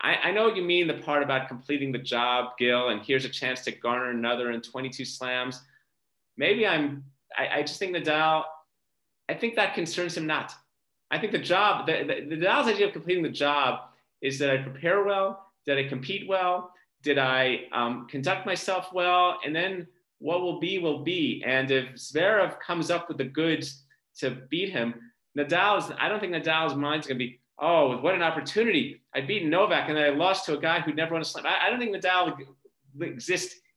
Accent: American